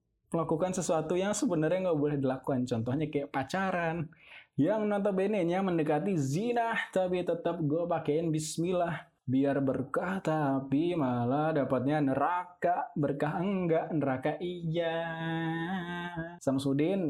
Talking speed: 110 wpm